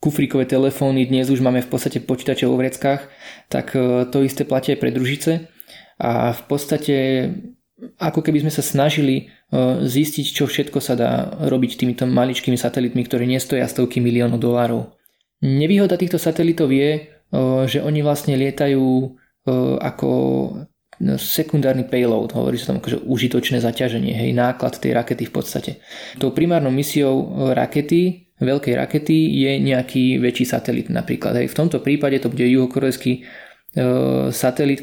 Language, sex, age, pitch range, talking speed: Slovak, male, 20-39, 125-145 Hz, 140 wpm